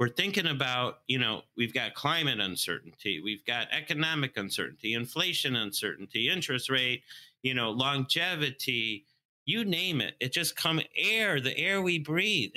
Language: English